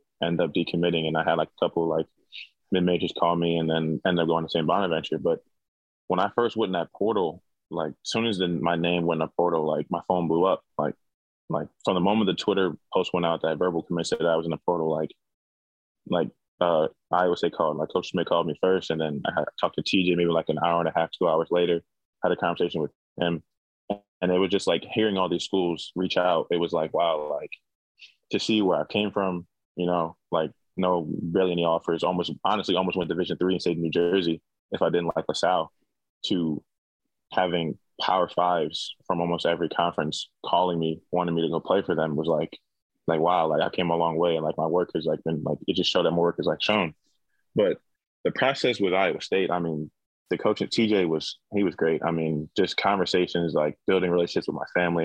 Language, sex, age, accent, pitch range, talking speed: English, male, 20-39, American, 80-90 Hz, 230 wpm